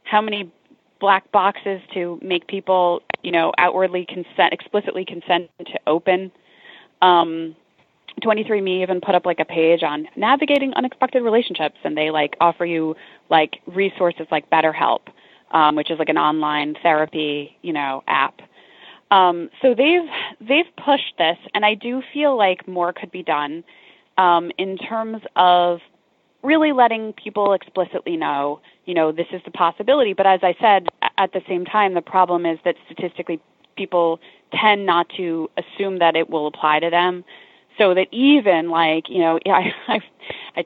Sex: female